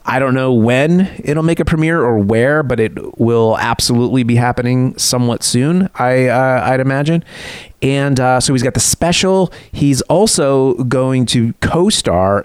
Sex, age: male, 30-49